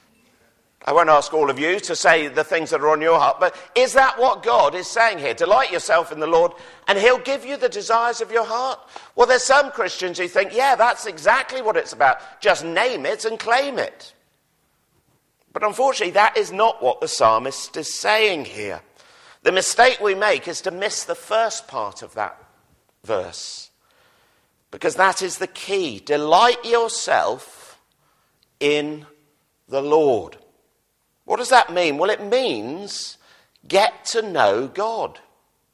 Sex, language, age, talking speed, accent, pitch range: male, English, 50-69, 170 wpm, British, 175-255 Hz